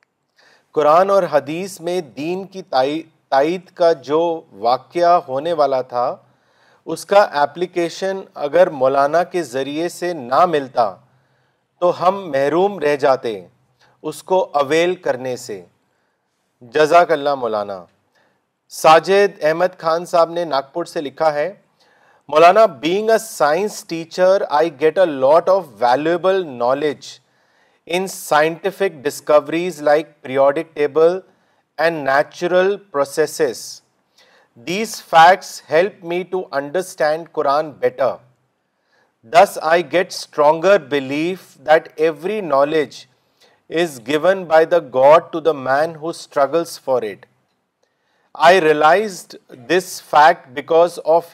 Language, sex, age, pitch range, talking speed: Urdu, male, 40-59, 145-180 Hz, 115 wpm